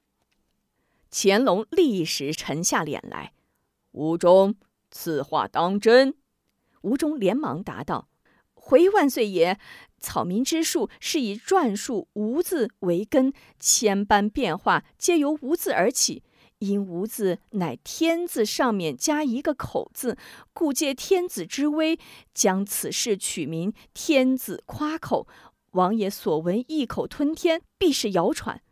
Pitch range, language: 195-315 Hz, Chinese